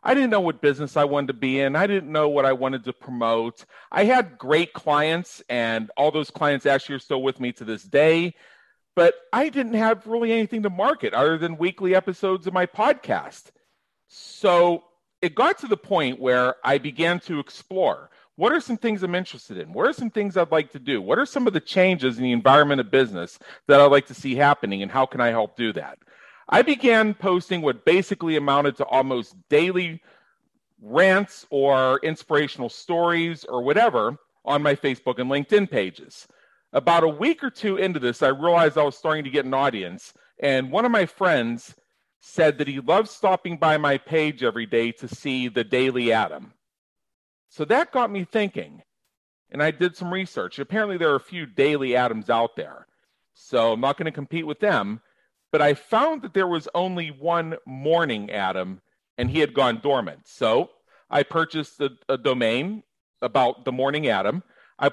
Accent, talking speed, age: American, 195 wpm, 40-59